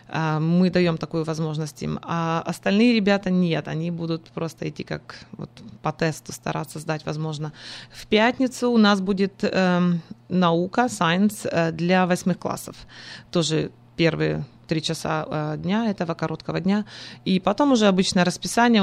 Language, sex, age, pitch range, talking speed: Russian, female, 20-39, 160-185 Hz, 135 wpm